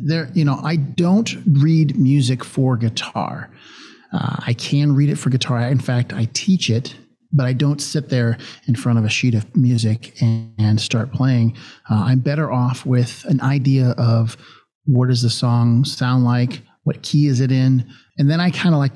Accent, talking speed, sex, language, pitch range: American, 195 wpm, male, English, 120-145 Hz